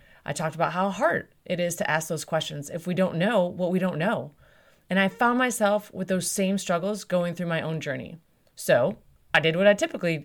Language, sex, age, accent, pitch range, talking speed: English, female, 30-49, American, 170-220 Hz, 225 wpm